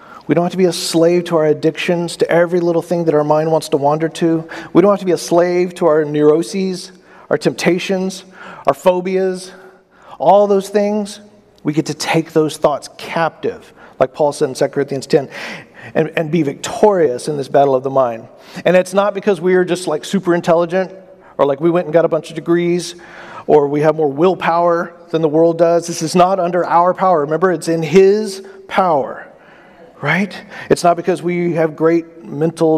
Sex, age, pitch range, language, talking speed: male, 40-59, 155-185 Hz, English, 200 wpm